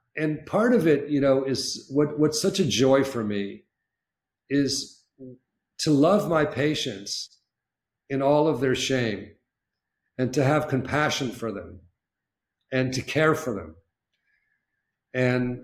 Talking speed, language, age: 135 wpm, English, 50-69